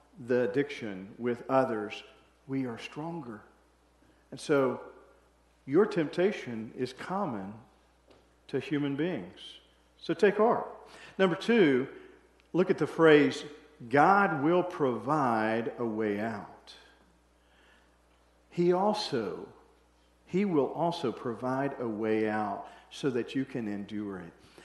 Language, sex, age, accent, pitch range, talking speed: English, male, 50-69, American, 90-150 Hz, 110 wpm